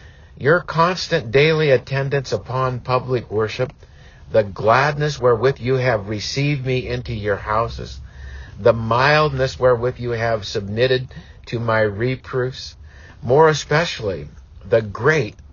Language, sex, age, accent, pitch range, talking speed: English, male, 50-69, American, 90-130 Hz, 115 wpm